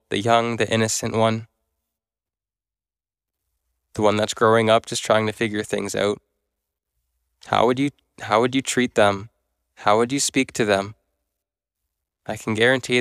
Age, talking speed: 10-29, 150 wpm